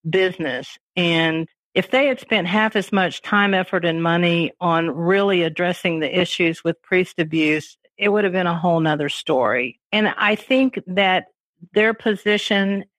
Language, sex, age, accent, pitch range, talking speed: English, female, 50-69, American, 175-220 Hz, 160 wpm